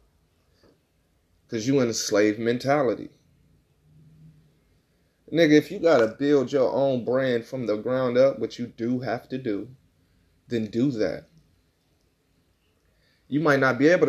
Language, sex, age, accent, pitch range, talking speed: English, male, 30-49, American, 105-135 Hz, 135 wpm